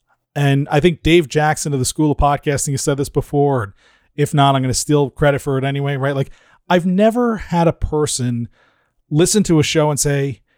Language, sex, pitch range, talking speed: English, male, 135-185 Hz, 210 wpm